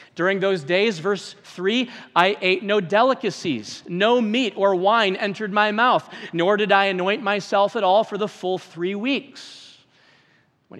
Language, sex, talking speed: English, male, 160 wpm